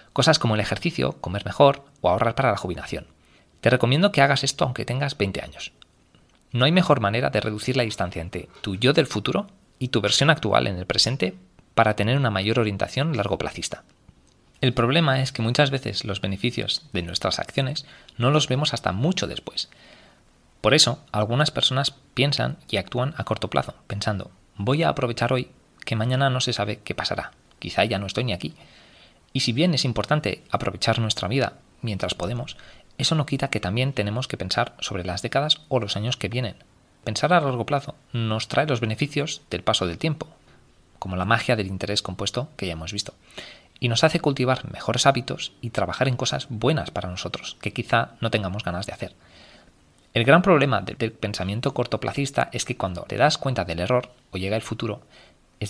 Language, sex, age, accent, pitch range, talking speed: Spanish, male, 20-39, Spanish, 105-135 Hz, 195 wpm